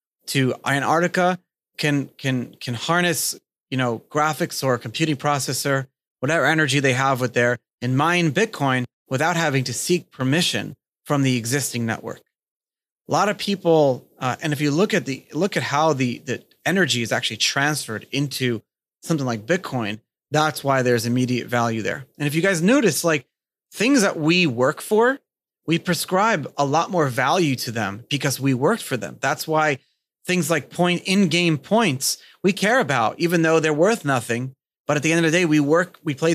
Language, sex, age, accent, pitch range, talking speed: English, male, 30-49, American, 130-165 Hz, 185 wpm